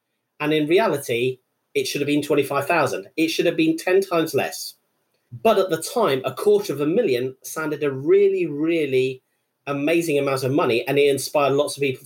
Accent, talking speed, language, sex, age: British, 190 wpm, English, male, 40-59